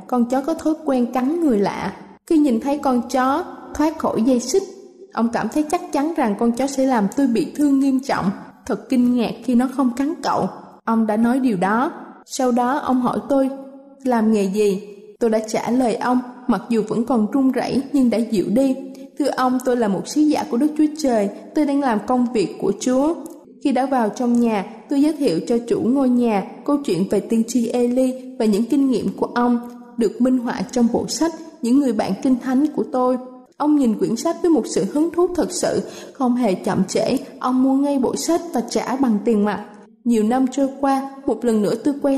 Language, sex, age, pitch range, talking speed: Vietnamese, female, 20-39, 225-280 Hz, 225 wpm